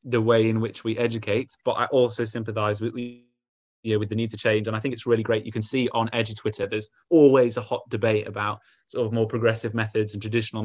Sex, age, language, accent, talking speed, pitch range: male, 20-39, English, British, 235 wpm, 110-130 Hz